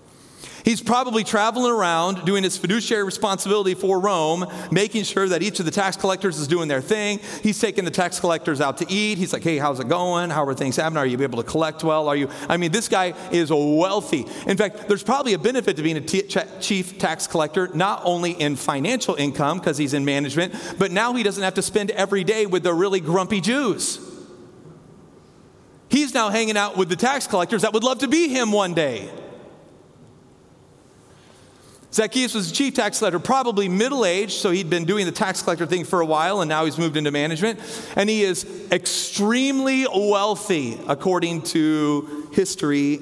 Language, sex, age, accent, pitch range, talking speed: English, male, 40-59, American, 160-215 Hz, 195 wpm